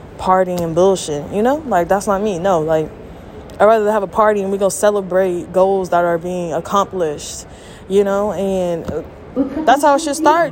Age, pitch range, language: 20-39, 185-235 Hz, English